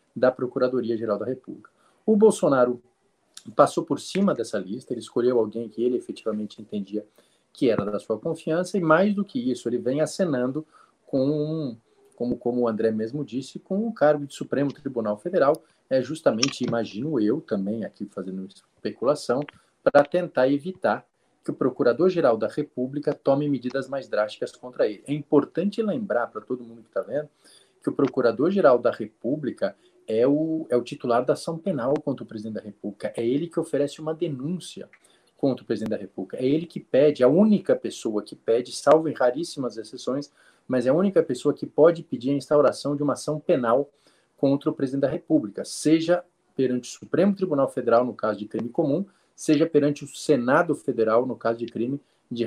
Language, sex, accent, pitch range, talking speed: Portuguese, male, Brazilian, 120-160 Hz, 180 wpm